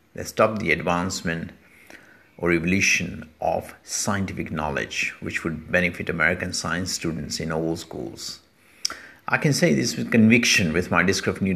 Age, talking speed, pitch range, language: 50-69, 150 wpm, 85-100 Hz, English